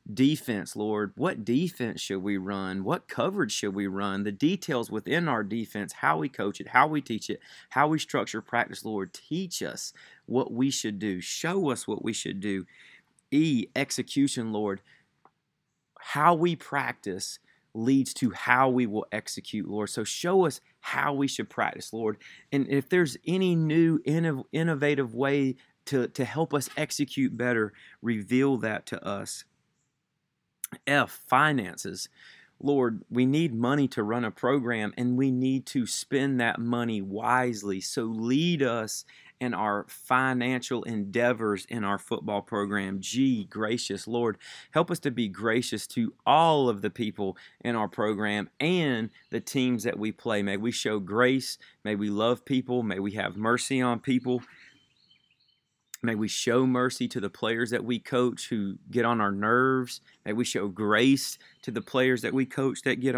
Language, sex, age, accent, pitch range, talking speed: English, male, 30-49, American, 105-135 Hz, 165 wpm